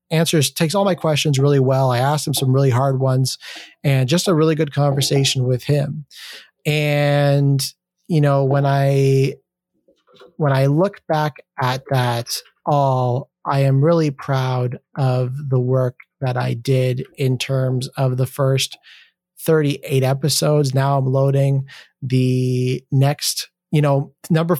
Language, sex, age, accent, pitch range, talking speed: English, male, 30-49, American, 130-150 Hz, 145 wpm